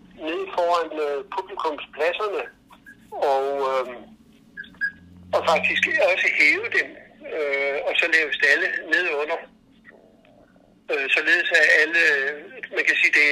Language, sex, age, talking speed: Danish, male, 60-79, 120 wpm